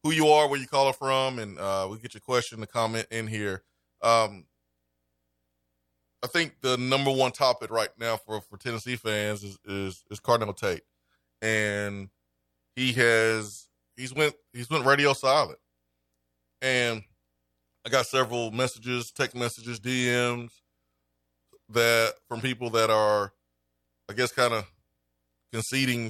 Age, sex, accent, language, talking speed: 20-39, male, American, English, 145 wpm